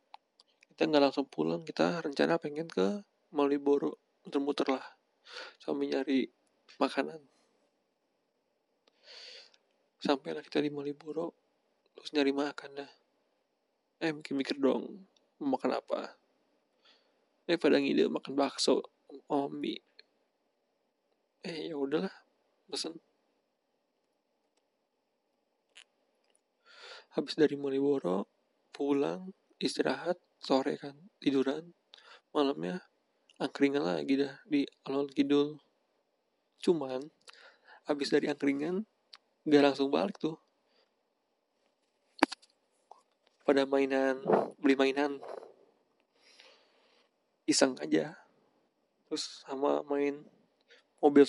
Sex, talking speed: male, 80 wpm